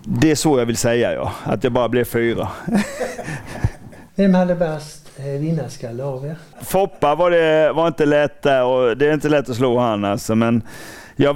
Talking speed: 175 wpm